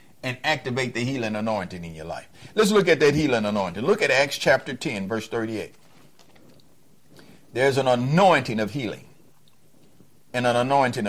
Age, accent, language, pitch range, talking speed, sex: 50-69, American, English, 115-150 Hz, 155 wpm, male